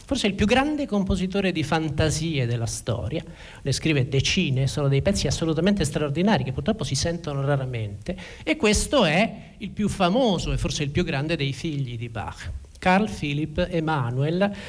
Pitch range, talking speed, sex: 140-195 Hz, 165 wpm, male